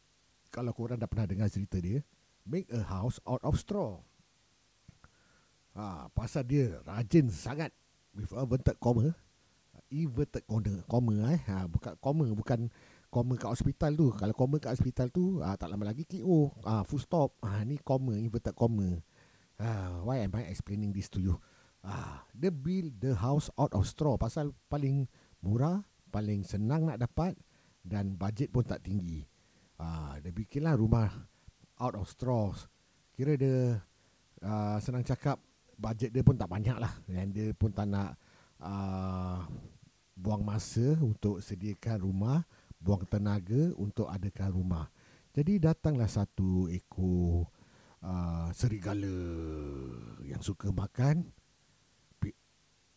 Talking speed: 145 wpm